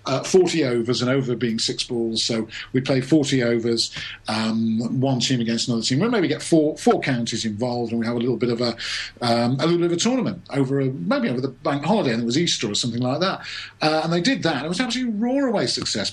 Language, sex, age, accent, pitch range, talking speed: English, male, 50-69, British, 125-170 Hz, 255 wpm